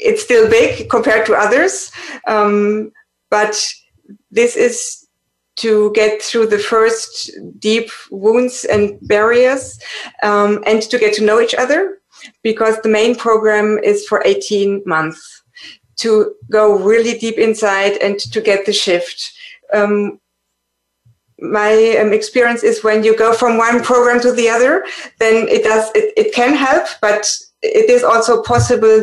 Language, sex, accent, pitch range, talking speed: English, female, German, 210-255 Hz, 145 wpm